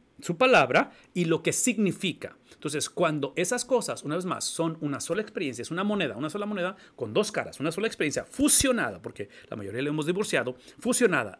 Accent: Mexican